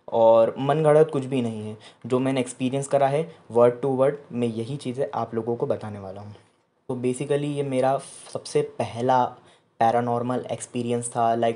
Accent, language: native, Hindi